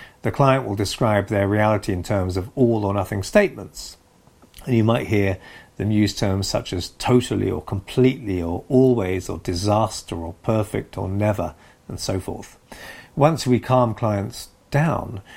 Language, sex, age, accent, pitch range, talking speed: English, male, 50-69, British, 95-120 Hz, 160 wpm